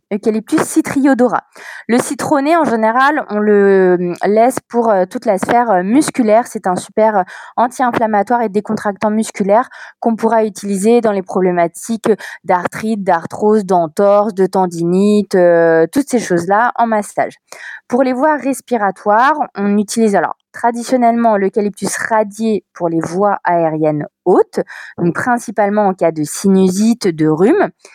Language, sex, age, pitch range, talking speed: French, female, 20-39, 180-230 Hz, 130 wpm